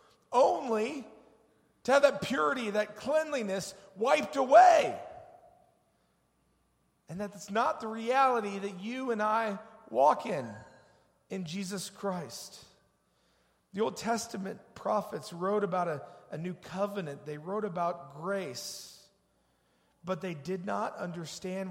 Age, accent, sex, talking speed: 40-59, American, male, 115 wpm